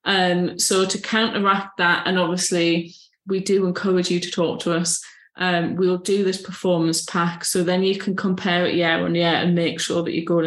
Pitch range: 170-190 Hz